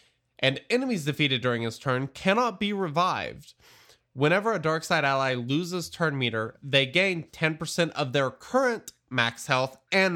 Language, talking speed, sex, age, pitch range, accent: English, 155 wpm, male, 20-39, 125-175 Hz, American